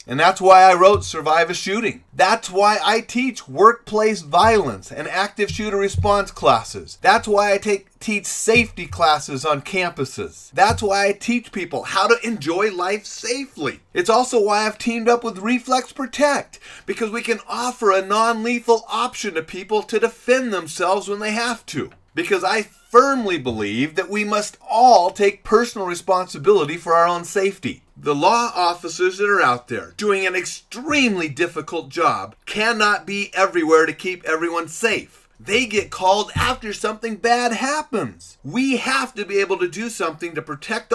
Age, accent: 30-49, American